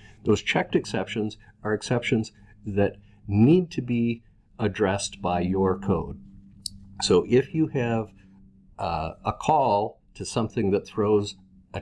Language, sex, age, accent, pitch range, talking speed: English, male, 50-69, American, 95-115 Hz, 125 wpm